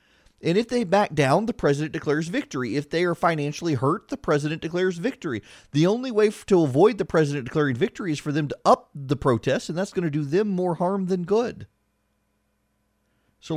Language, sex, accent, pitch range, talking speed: English, male, American, 125-170 Hz, 200 wpm